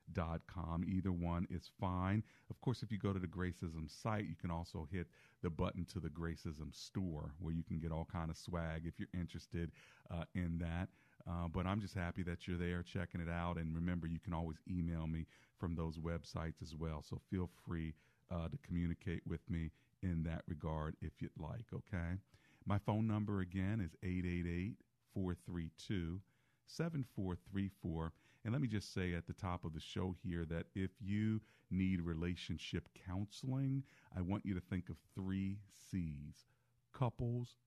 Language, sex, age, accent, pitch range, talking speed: English, male, 40-59, American, 85-105 Hz, 175 wpm